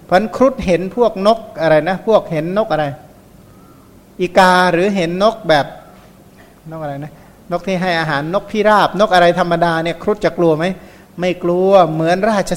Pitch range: 160-195 Hz